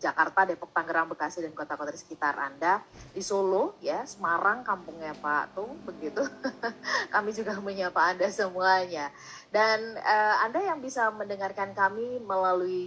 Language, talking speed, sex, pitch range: Indonesian, 140 wpm, female, 165-225 Hz